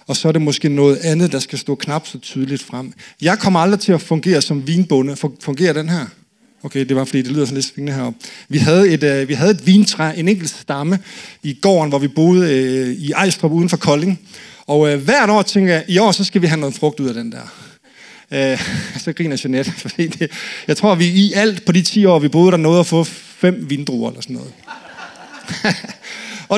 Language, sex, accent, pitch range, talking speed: Danish, male, native, 150-205 Hz, 225 wpm